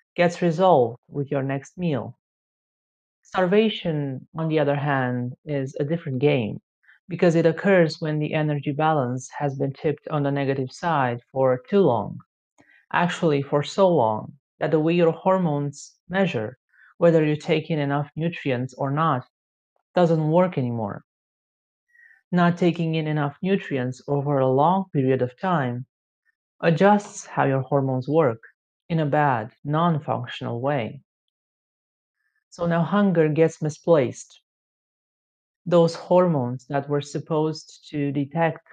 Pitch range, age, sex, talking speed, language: 140-170 Hz, 30-49, male, 135 wpm, English